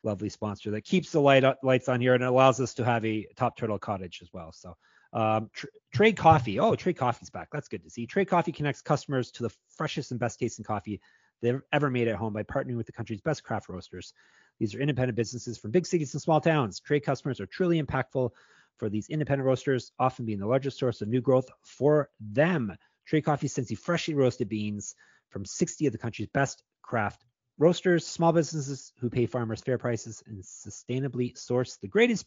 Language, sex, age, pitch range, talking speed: English, male, 30-49, 110-150 Hz, 210 wpm